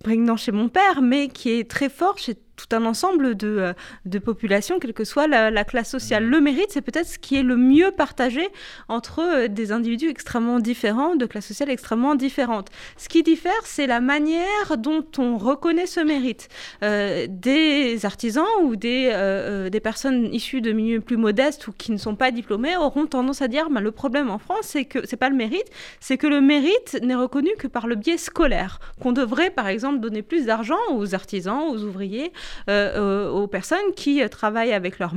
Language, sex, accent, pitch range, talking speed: French, female, French, 215-290 Hz, 200 wpm